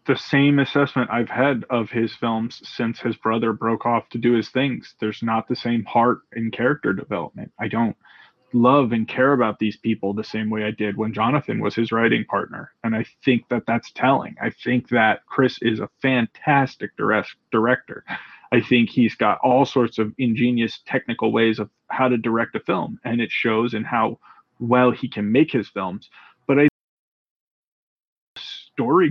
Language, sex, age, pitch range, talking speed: English, male, 20-39, 115-140 Hz, 175 wpm